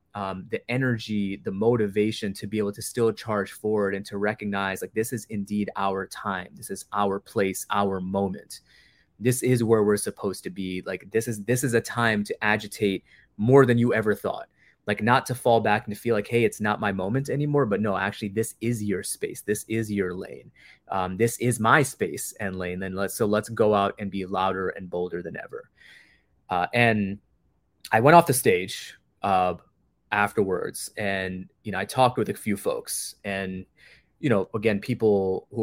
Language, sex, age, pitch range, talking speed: English, male, 20-39, 95-115 Hz, 200 wpm